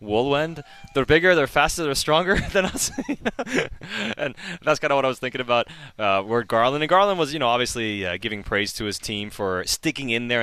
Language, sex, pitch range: English, male, 105-145 Hz